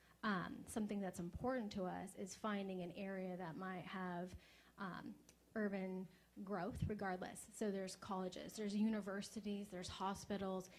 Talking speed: 135 wpm